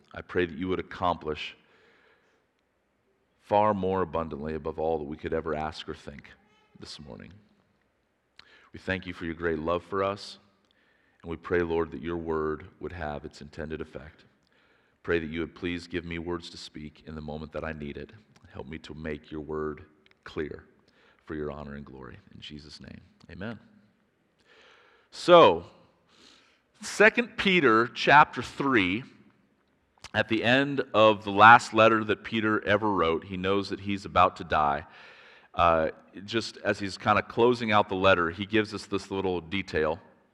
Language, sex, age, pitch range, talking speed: English, male, 40-59, 80-105 Hz, 170 wpm